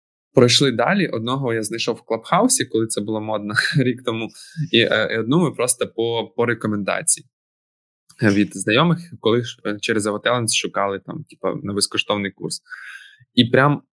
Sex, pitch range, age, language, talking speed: male, 110-145 Hz, 20-39, Ukrainian, 140 wpm